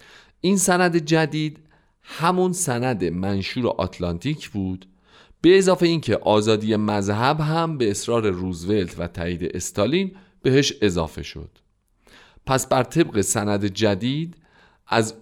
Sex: male